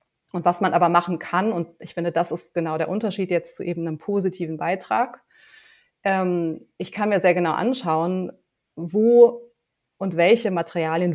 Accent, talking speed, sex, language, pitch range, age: German, 160 wpm, female, German, 165-185 Hz, 30-49